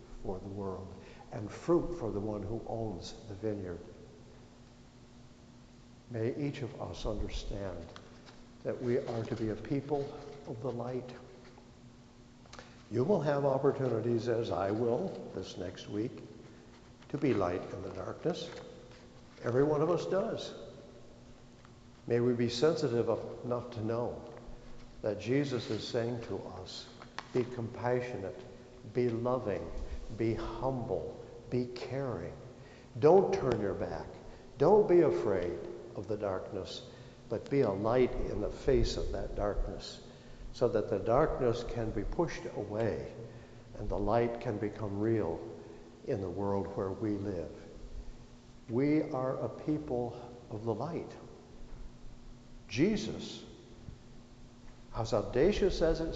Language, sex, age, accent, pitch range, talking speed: English, male, 60-79, American, 110-125 Hz, 130 wpm